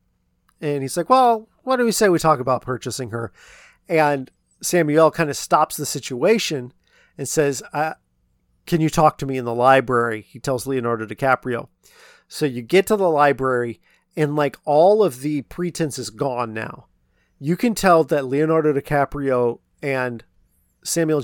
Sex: male